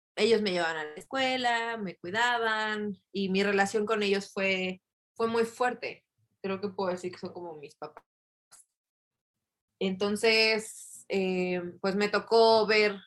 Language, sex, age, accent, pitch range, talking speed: Spanish, female, 20-39, Mexican, 170-225 Hz, 145 wpm